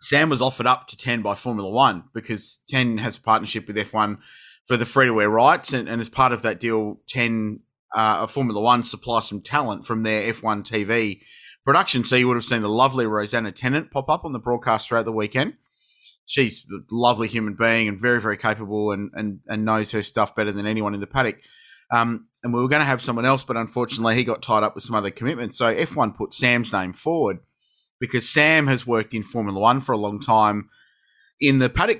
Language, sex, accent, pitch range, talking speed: English, male, Australian, 110-135 Hz, 215 wpm